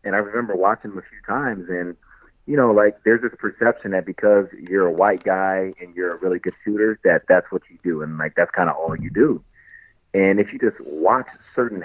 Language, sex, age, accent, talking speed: English, male, 30-49, American, 235 wpm